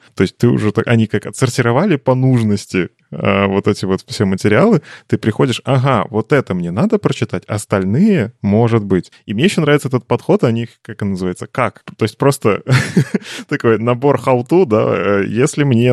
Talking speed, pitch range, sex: 175 wpm, 100-130 Hz, male